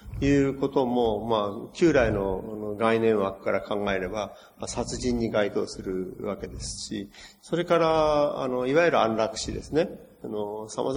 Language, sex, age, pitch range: Japanese, male, 40-59, 105-130 Hz